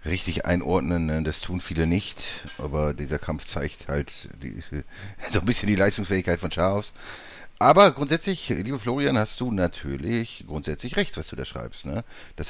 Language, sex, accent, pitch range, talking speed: German, male, German, 80-105 Hz, 165 wpm